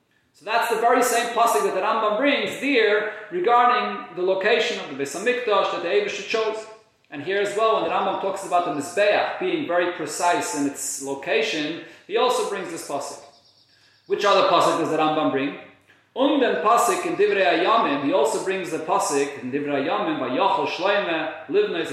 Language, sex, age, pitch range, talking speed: English, male, 40-59, 155-220 Hz, 185 wpm